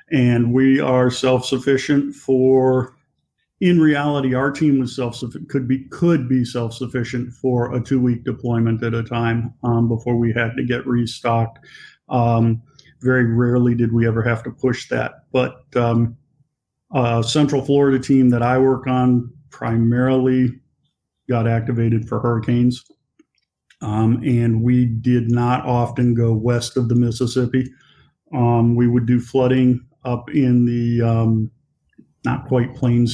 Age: 50-69